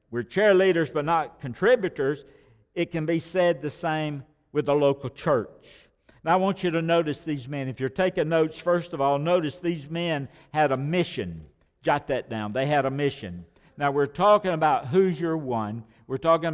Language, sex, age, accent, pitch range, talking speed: English, male, 60-79, American, 130-175 Hz, 190 wpm